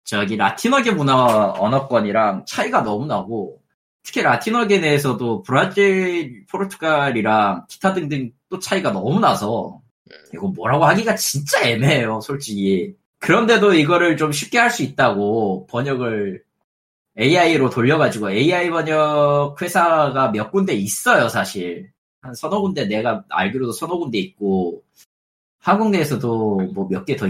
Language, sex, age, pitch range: Korean, male, 20-39, 120-190 Hz